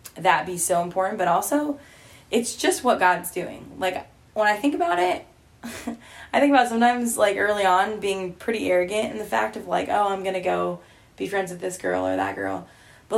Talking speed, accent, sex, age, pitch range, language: 205 wpm, American, female, 10-29, 170-210 Hz, English